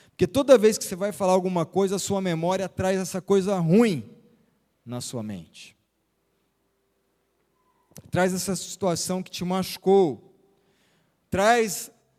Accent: Brazilian